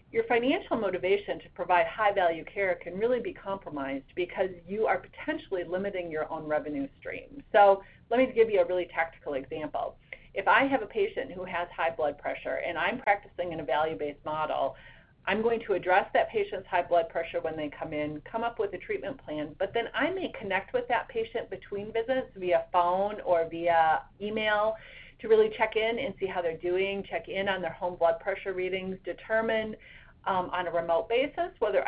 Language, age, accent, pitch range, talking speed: English, 40-59, American, 165-220 Hz, 195 wpm